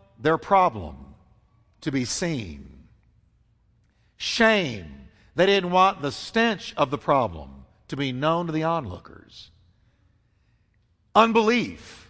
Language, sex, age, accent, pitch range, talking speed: English, male, 50-69, American, 115-190 Hz, 105 wpm